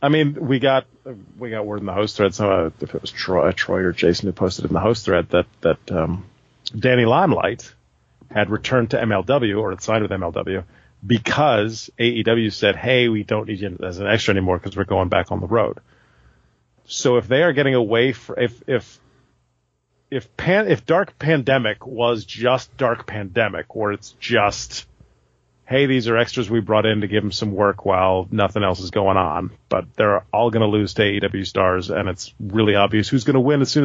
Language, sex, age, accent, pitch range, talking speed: English, male, 40-59, American, 95-120 Hz, 205 wpm